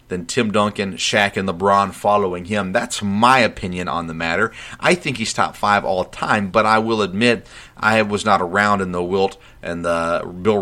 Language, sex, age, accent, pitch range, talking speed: English, male, 40-59, American, 90-110 Hz, 205 wpm